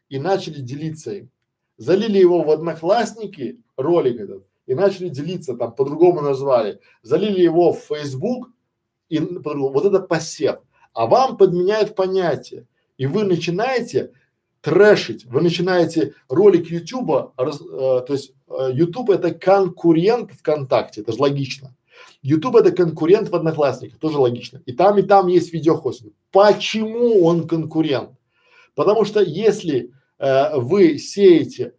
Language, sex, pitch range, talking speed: Russian, male, 145-200 Hz, 130 wpm